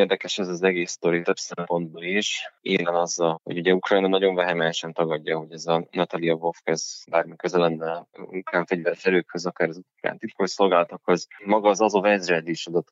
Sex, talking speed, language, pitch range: male, 190 wpm, Hungarian, 85-95 Hz